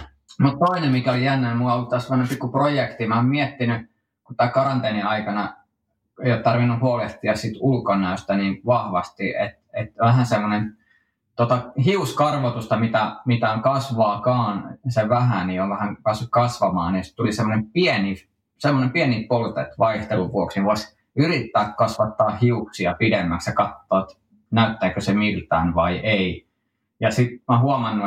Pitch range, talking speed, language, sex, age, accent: 100-130 Hz, 140 wpm, Finnish, male, 20-39, native